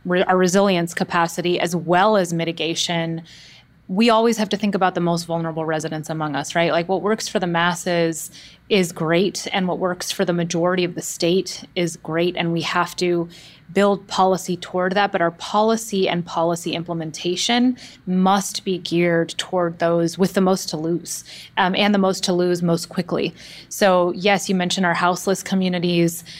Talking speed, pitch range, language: 175 wpm, 170-190 Hz, English